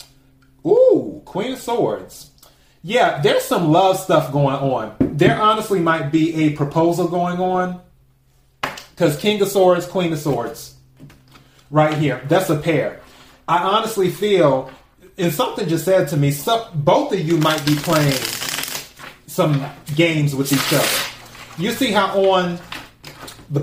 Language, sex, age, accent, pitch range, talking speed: English, male, 30-49, American, 140-175 Hz, 140 wpm